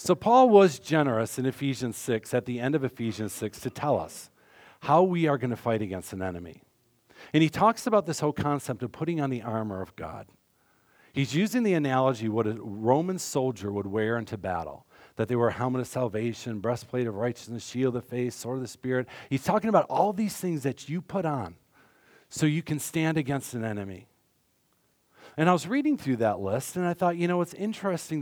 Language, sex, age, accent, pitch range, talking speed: English, male, 50-69, American, 115-165 Hz, 215 wpm